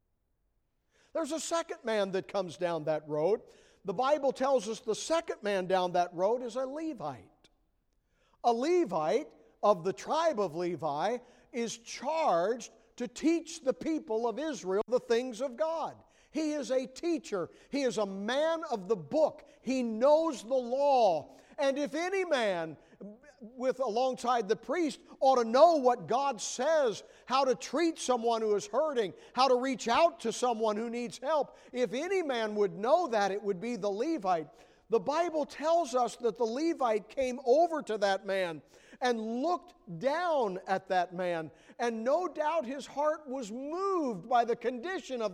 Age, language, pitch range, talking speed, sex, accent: 50-69, English, 220-305 Hz, 165 wpm, male, American